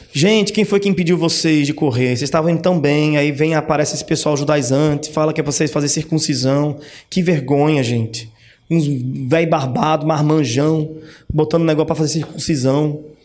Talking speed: 170 wpm